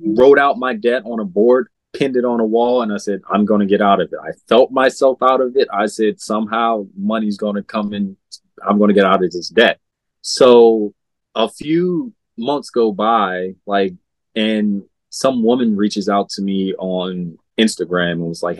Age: 20-39